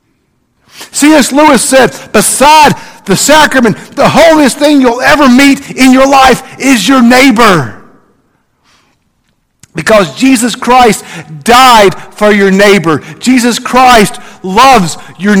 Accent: American